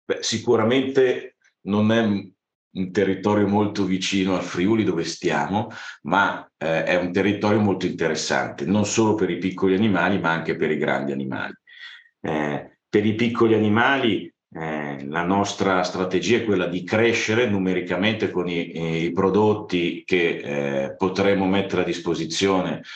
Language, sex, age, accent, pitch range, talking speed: Italian, male, 50-69, native, 90-105 Hz, 145 wpm